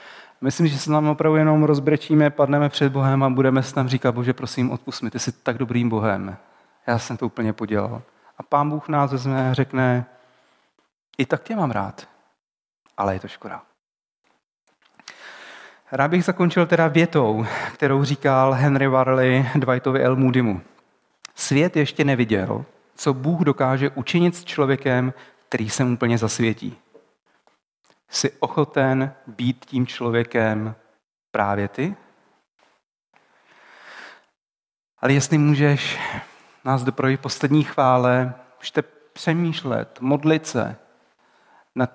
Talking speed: 125 wpm